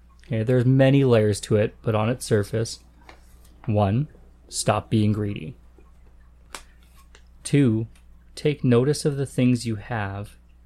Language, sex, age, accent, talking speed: English, male, 30-49, American, 120 wpm